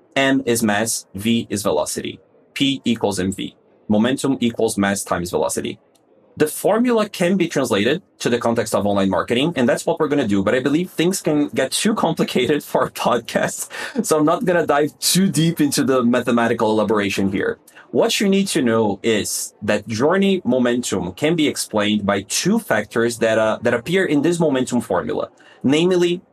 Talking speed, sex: 180 wpm, male